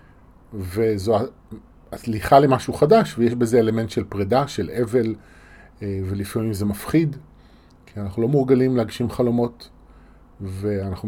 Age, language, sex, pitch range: 30-49, Hebrew, male, 95-140 Hz